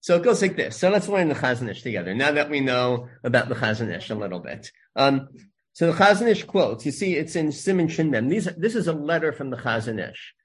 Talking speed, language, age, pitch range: 230 wpm, English, 50-69, 120-155 Hz